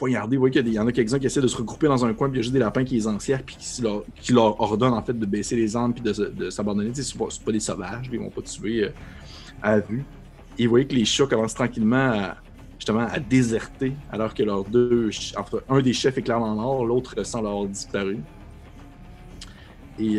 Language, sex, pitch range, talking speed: French, male, 105-130 Hz, 245 wpm